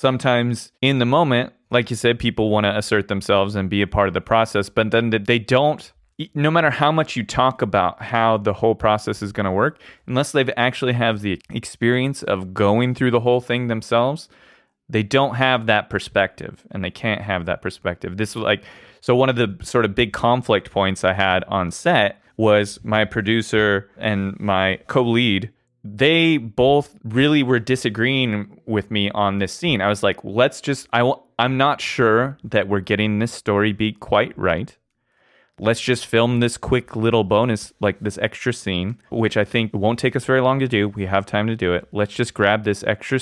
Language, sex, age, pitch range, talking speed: English, male, 20-39, 105-125 Hz, 200 wpm